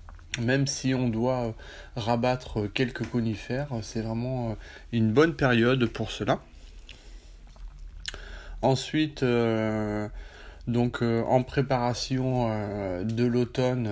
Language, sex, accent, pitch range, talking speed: French, male, French, 105-120 Hz, 100 wpm